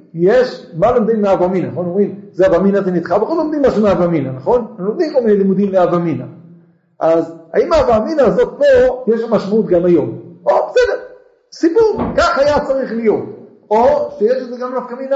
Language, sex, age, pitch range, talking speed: Hebrew, male, 50-69, 175-270 Hz, 180 wpm